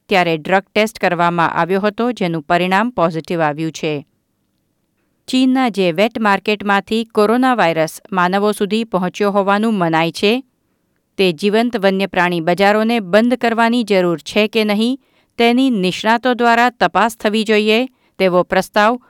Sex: female